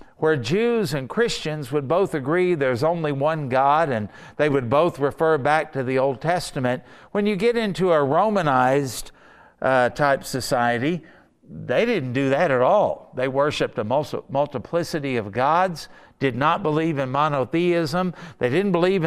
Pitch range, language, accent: 130-180 Hz, English, American